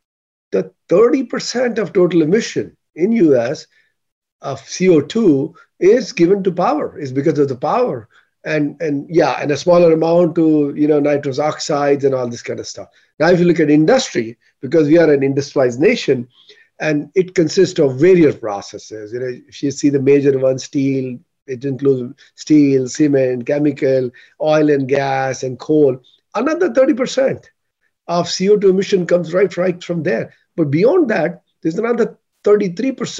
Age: 50-69